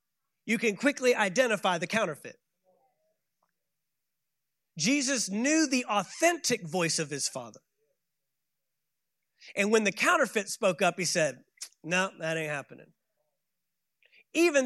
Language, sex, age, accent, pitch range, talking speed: English, male, 30-49, American, 160-220 Hz, 110 wpm